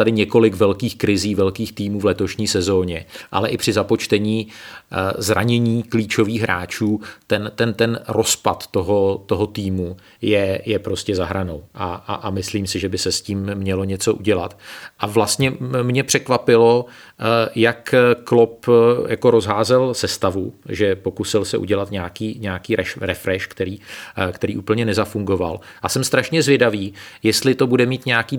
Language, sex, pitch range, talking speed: Czech, male, 100-120 Hz, 150 wpm